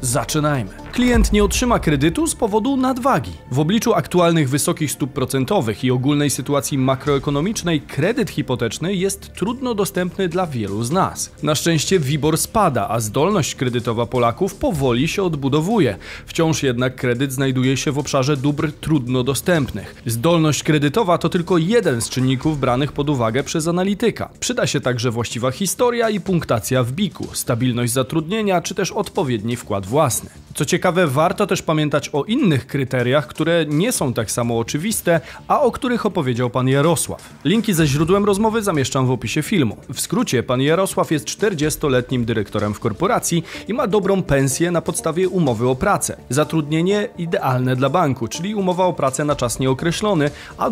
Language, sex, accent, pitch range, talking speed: Polish, male, native, 130-185 Hz, 160 wpm